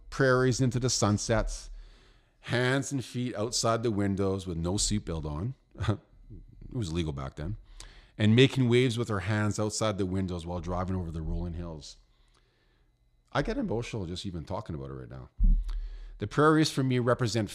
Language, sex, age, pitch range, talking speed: English, male, 40-59, 90-125 Hz, 170 wpm